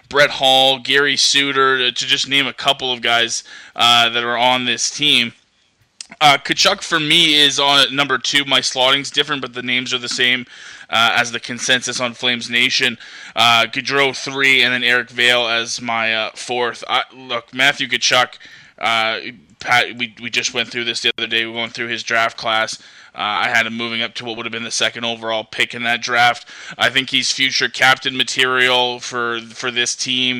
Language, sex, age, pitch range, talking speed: English, male, 20-39, 120-135 Hz, 200 wpm